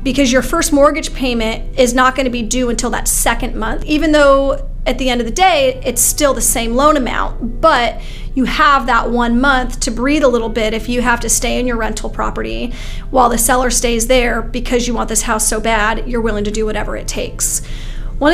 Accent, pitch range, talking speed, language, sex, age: American, 235-280 Hz, 225 wpm, English, female, 30-49